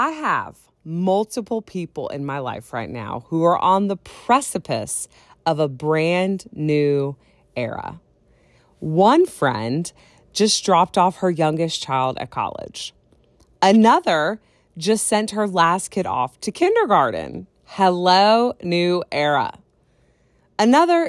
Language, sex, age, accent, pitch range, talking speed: English, female, 30-49, American, 160-245 Hz, 120 wpm